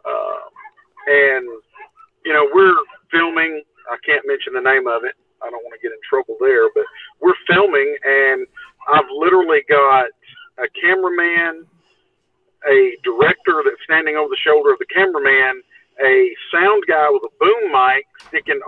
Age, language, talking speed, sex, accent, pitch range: 50-69, English, 155 wpm, male, American, 365-430 Hz